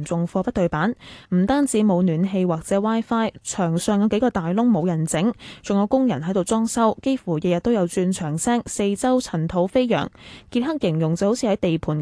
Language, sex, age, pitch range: Chinese, female, 10-29, 180-240 Hz